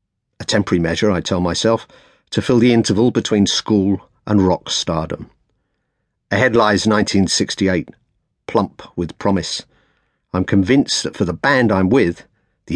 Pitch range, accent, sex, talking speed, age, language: 90-115 Hz, British, male, 140 wpm, 50-69, English